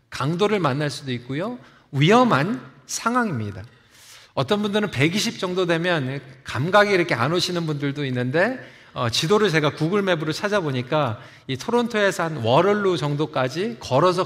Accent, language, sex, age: native, Korean, male, 40-59